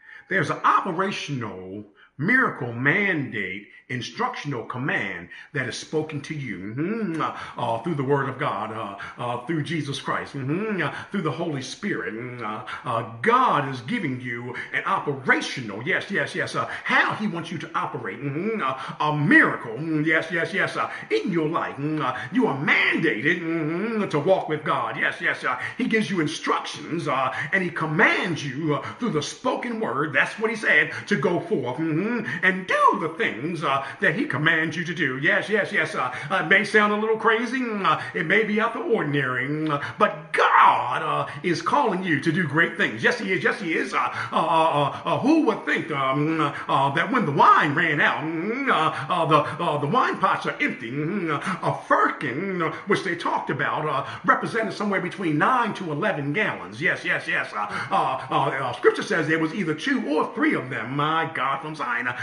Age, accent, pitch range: 50-69, American, 145-205 Hz